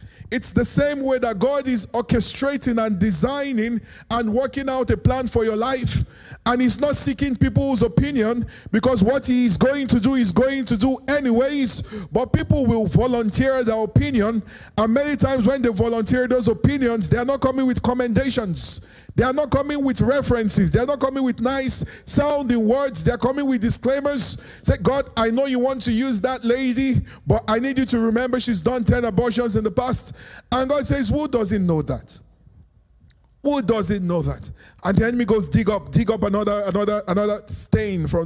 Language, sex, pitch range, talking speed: English, male, 210-265 Hz, 190 wpm